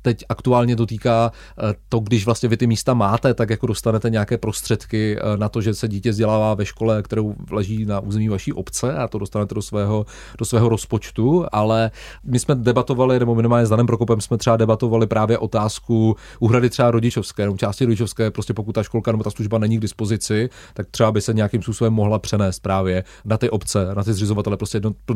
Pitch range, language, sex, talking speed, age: 105-115 Hz, Czech, male, 200 wpm, 30-49